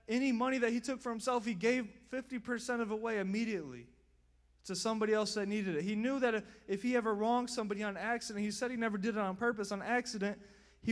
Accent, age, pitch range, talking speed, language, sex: American, 20-39, 175-230 Hz, 230 wpm, English, male